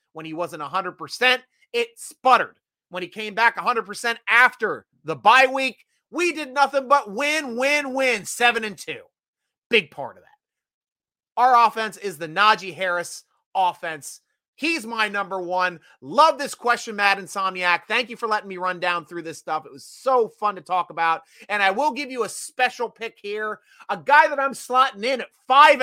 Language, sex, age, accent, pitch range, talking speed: English, male, 30-49, American, 180-245 Hz, 185 wpm